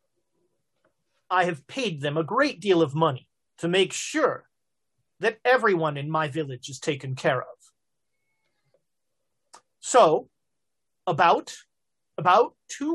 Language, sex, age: English, male, 40-59